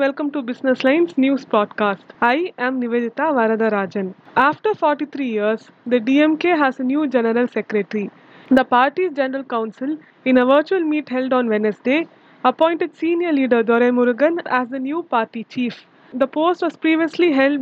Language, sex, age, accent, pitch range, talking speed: English, female, 20-39, Indian, 245-310 Hz, 160 wpm